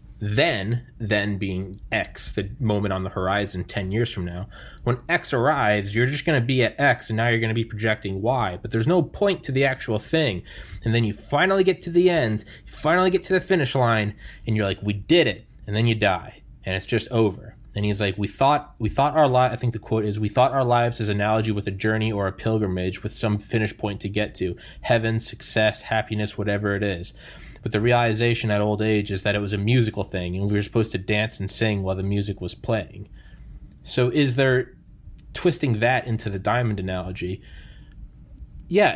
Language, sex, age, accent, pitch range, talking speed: English, male, 20-39, American, 105-125 Hz, 220 wpm